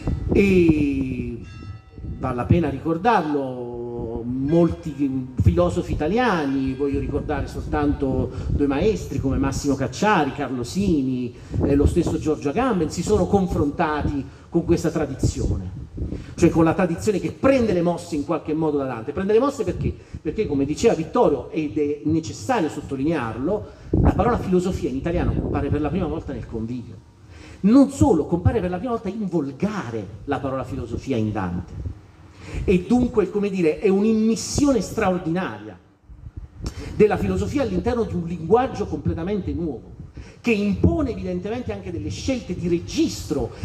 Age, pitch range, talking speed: 40-59, 120-180 Hz, 140 wpm